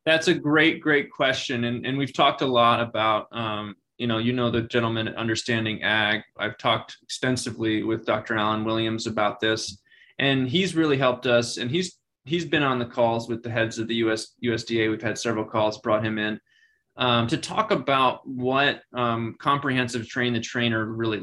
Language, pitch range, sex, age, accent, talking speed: English, 115-140 Hz, male, 20-39, American, 195 wpm